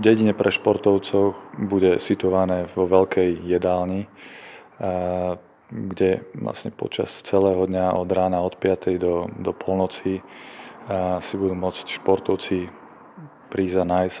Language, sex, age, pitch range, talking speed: Slovak, male, 20-39, 90-95 Hz, 115 wpm